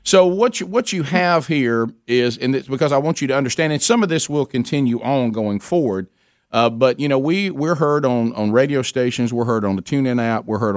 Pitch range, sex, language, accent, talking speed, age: 105-125 Hz, male, English, American, 245 wpm, 50-69